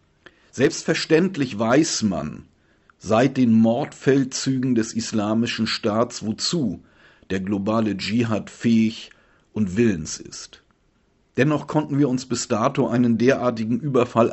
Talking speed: 110 wpm